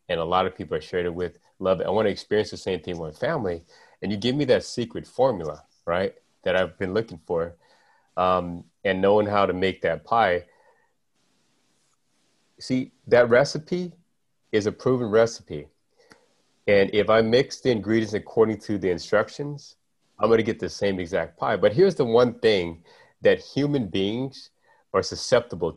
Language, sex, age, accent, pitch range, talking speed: English, male, 30-49, American, 100-135 Hz, 170 wpm